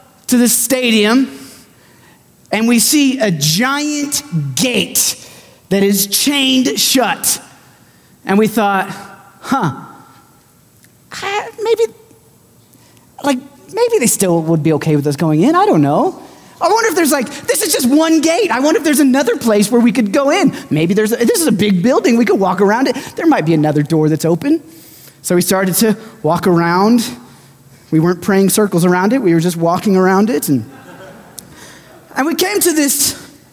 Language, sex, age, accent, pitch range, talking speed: English, male, 30-49, American, 190-300 Hz, 175 wpm